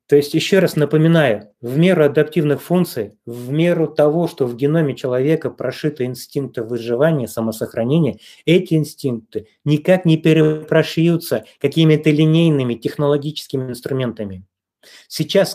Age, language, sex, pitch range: 30-49, Russian, male, 125-160 Hz